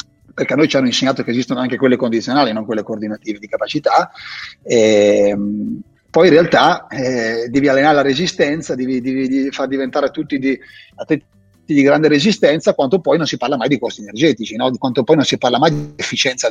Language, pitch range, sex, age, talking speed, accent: Italian, 130-160 Hz, male, 30-49, 200 wpm, native